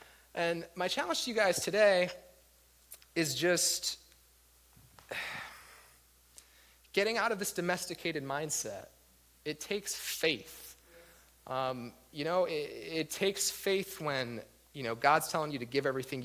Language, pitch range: English, 105-170 Hz